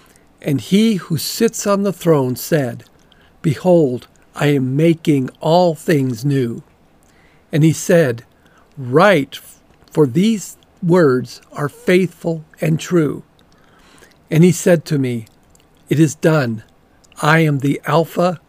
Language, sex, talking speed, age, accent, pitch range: English, male, 125 wpm, 50-69, American, 130-170 Hz